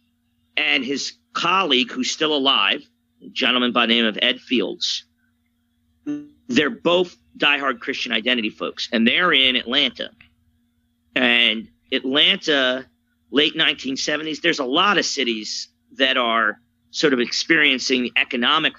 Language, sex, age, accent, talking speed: English, male, 40-59, American, 125 wpm